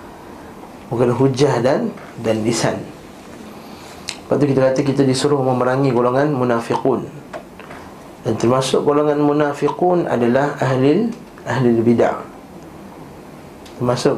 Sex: male